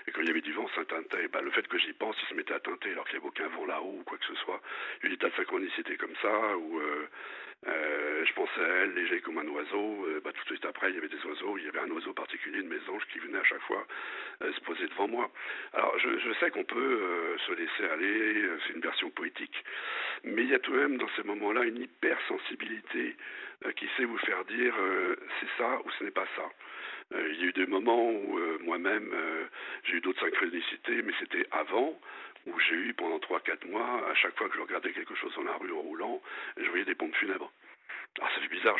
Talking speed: 260 wpm